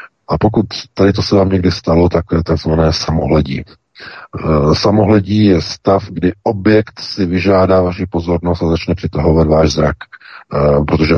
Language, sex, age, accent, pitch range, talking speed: Czech, male, 40-59, native, 80-90 Hz, 145 wpm